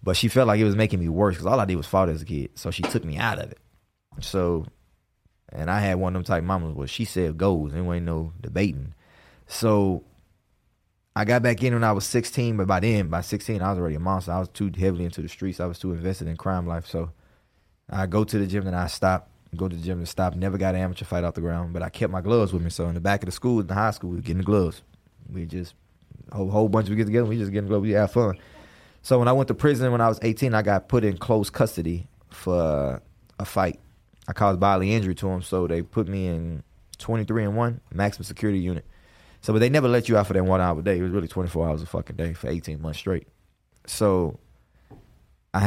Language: English